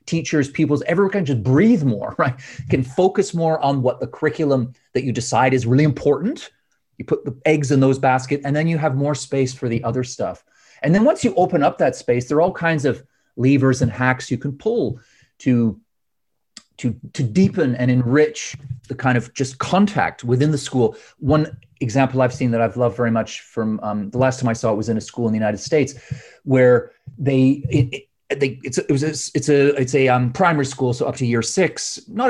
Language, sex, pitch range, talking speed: English, male, 125-155 Hz, 210 wpm